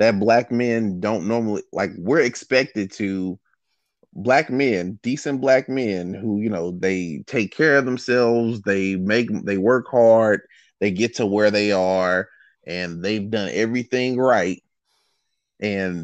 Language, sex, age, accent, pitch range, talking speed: English, male, 30-49, American, 100-115 Hz, 145 wpm